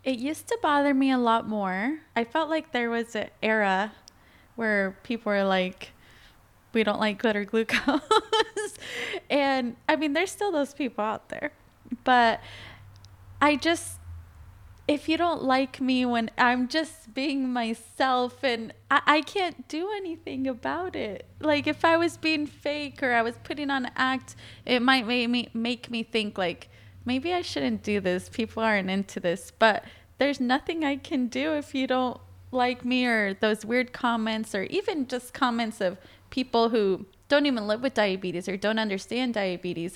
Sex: female